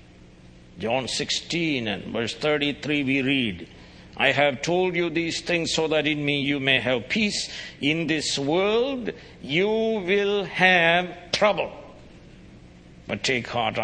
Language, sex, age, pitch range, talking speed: English, male, 60-79, 110-175 Hz, 135 wpm